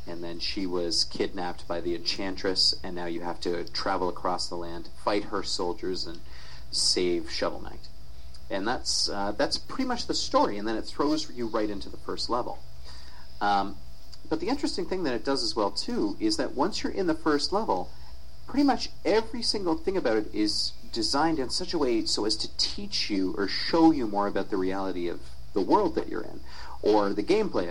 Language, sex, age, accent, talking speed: English, male, 40-59, American, 205 wpm